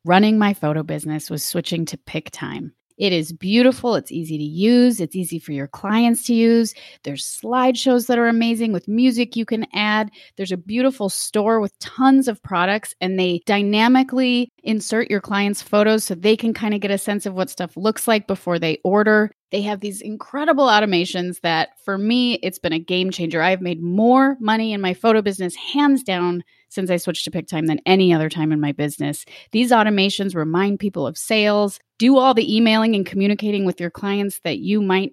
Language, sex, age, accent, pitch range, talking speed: English, female, 30-49, American, 180-225 Hz, 200 wpm